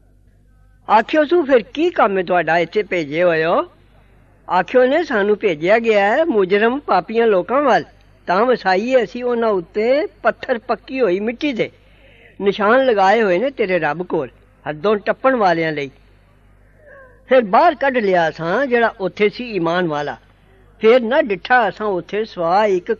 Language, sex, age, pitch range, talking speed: English, female, 60-79, 165-230 Hz, 90 wpm